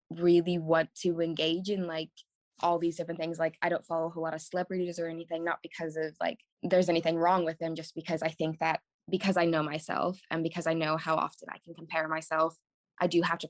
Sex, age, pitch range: female, 20-39, 160-175 Hz